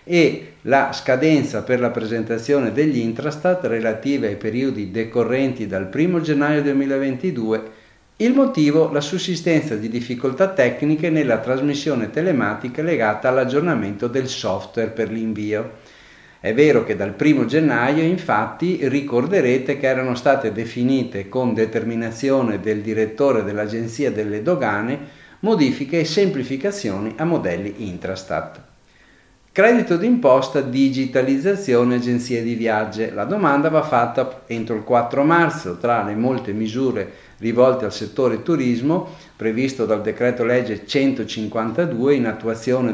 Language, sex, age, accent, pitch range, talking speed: Italian, male, 50-69, native, 110-145 Hz, 120 wpm